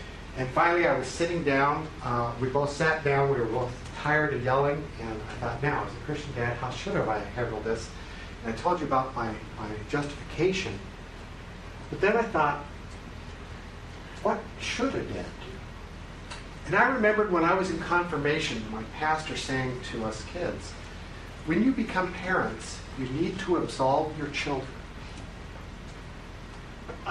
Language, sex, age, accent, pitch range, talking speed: English, male, 60-79, American, 100-150 Hz, 160 wpm